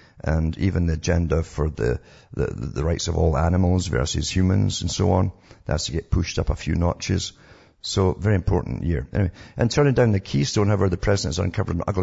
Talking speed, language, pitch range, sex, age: 210 wpm, English, 85-105 Hz, male, 50-69